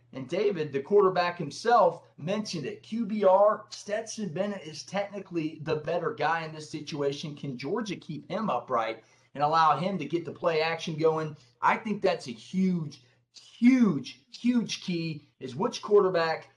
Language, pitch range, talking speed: English, 150-205 Hz, 155 wpm